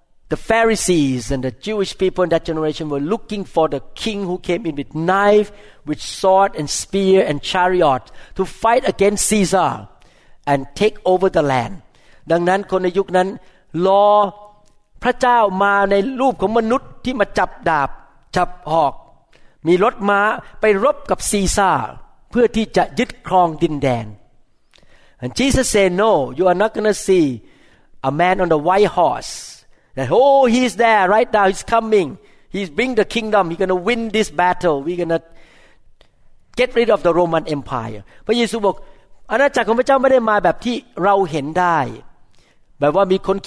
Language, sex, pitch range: Thai, male, 155-210 Hz